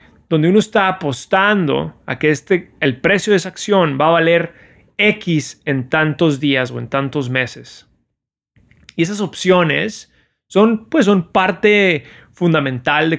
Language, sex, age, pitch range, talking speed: Spanish, male, 30-49, 140-175 Hz, 135 wpm